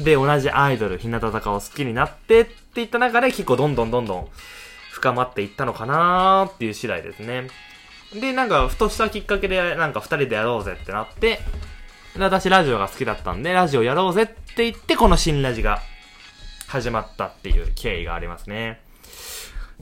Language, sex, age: Japanese, male, 20-39